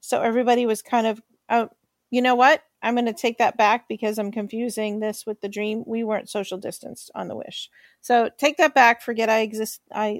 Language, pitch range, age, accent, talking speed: English, 215-255 Hz, 40-59, American, 220 wpm